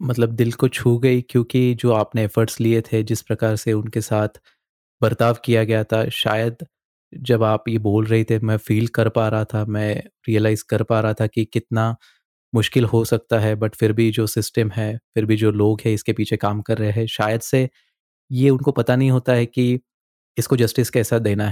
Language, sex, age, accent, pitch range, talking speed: Hindi, male, 20-39, native, 105-115 Hz, 210 wpm